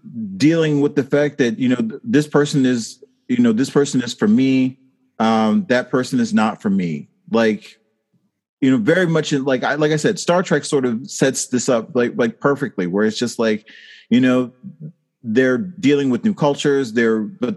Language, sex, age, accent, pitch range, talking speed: English, male, 30-49, American, 125-170 Hz, 195 wpm